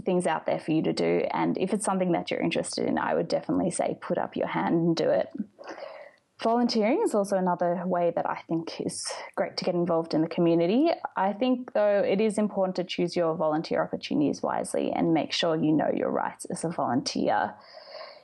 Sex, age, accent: female, 20-39, Australian